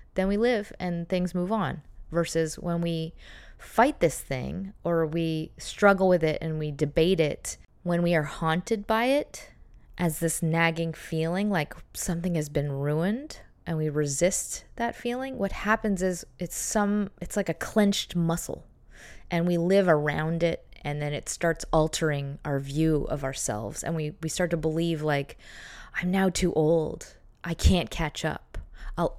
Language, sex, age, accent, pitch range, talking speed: English, female, 20-39, American, 155-190 Hz, 170 wpm